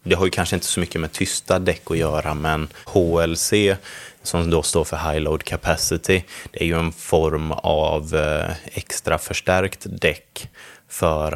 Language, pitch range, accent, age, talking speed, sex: Swedish, 75-85 Hz, native, 20-39, 165 wpm, male